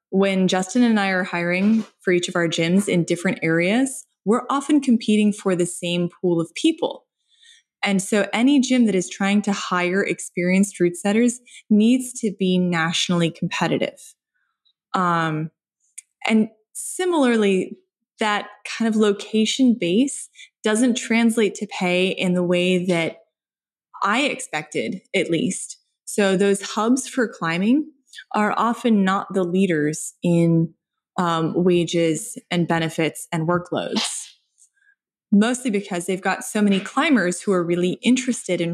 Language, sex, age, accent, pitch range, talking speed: English, female, 20-39, American, 175-230 Hz, 140 wpm